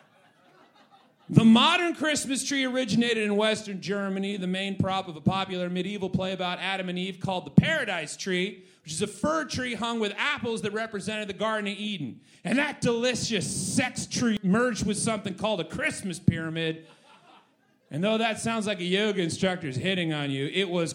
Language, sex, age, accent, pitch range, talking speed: English, male, 30-49, American, 185-245 Hz, 185 wpm